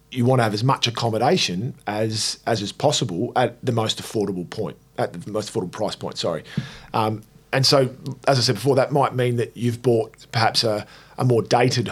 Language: English